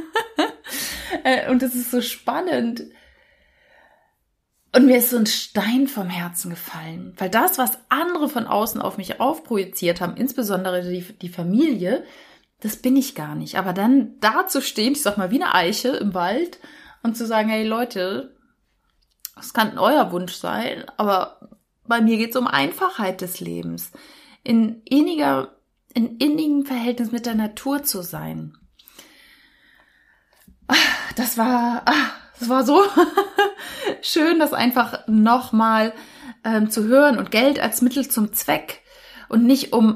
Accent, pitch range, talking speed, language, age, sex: German, 205-275 Hz, 145 wpm, German, 30-49, female